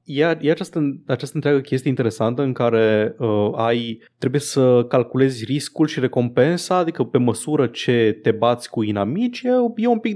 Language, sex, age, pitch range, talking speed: Romanian, male, 20-39, 115-145 Hz, 160 wpm